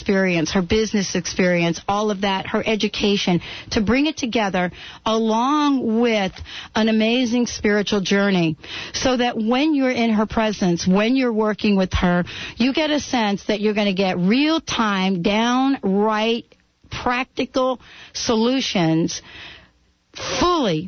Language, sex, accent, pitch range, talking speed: English, female, American, 190-230 Hz, 130 wpm